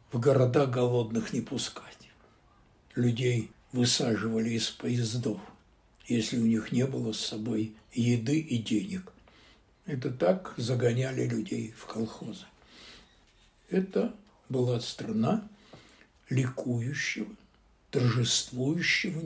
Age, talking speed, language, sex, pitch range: 60-79, 95 wpm, Russian, male, 125-185 Hz